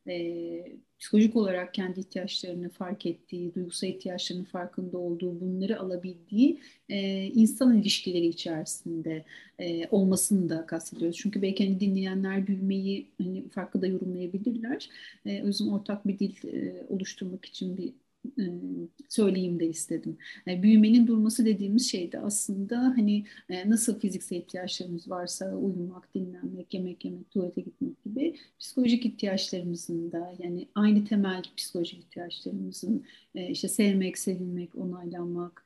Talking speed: 125 wpm